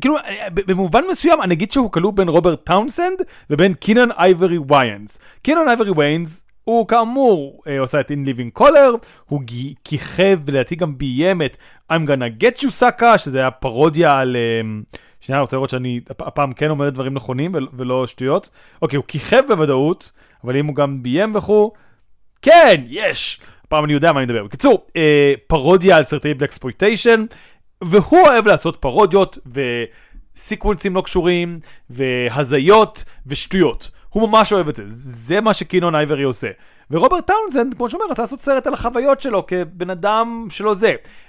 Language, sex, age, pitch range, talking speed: Hebrew, male, 30-49, 140-215 Hz, 155 wpm